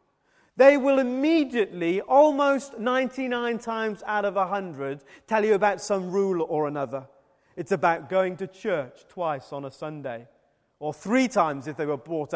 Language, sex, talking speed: English, male, 155 wpm